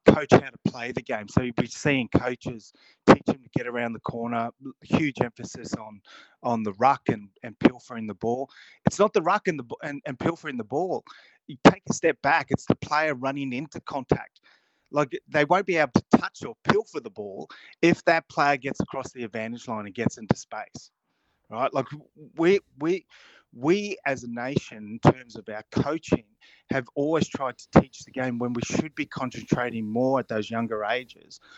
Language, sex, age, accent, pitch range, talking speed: English, male, 30-49, Australian, 115-150 Hz, 200 wpm